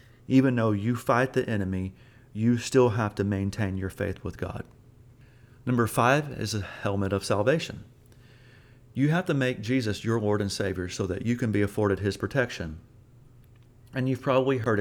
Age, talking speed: 40-59, 175 wpm